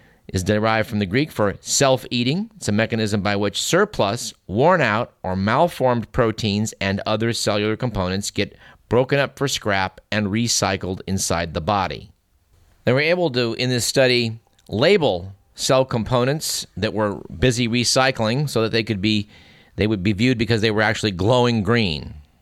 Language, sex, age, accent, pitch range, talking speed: English, male, 50-69, American, 100-125 Hz, 165 wpm